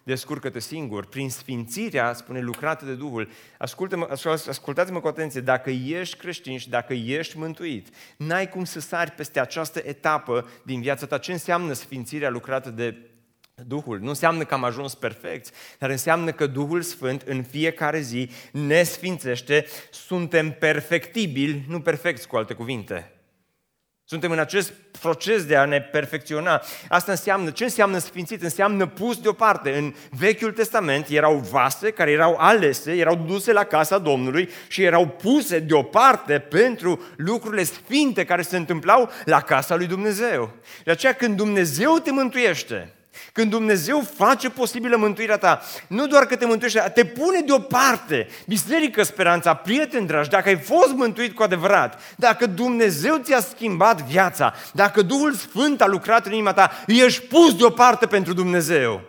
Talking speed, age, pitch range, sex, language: 150 wpm, 30-49, 145-220 Hz, male, Romanian